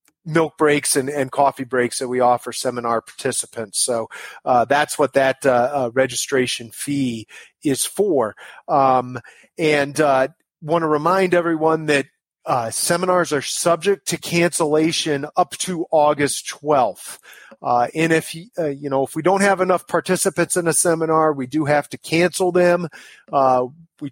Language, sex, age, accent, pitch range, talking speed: English, male, 30-49, American, 135-165 Hz, 155 wpm